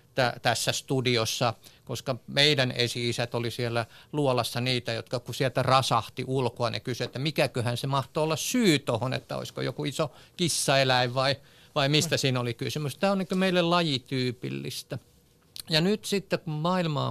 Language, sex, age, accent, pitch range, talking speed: Finnish, male, 50-69, native, 125-160 Hz, 160 wpm